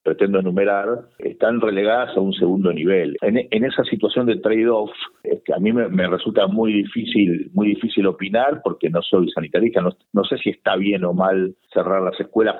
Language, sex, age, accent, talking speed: Spanish, male, 50-69, Argentinian, 190 wpm